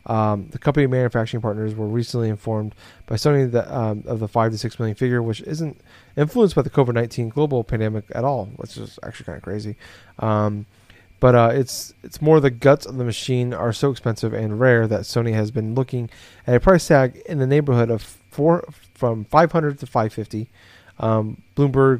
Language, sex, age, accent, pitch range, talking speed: English, male, 30-49, American, 110-130 Hz, 200 wpm